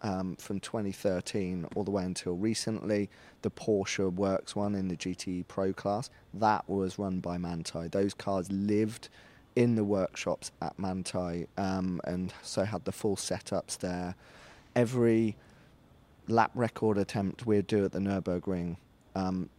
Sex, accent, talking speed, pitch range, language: male, British, 145 wpm, 90-110 Hz, English